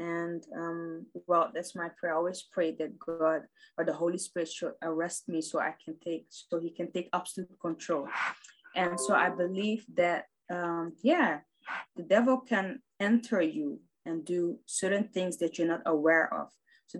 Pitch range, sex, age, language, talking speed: 165-195 Hz, female, 20-39, English, 175 wpm